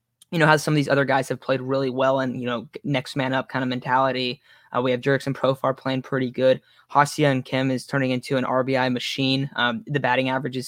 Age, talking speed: 10-29, 235 wpm